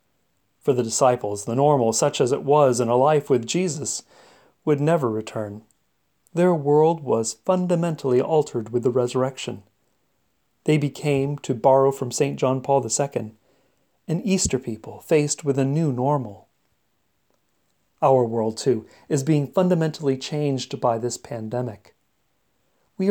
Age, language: 40-59, English